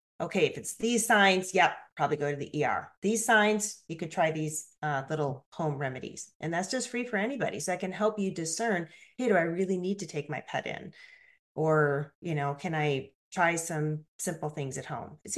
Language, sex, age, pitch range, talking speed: English, female, 40-59, 155-215 Hz, 215 wpm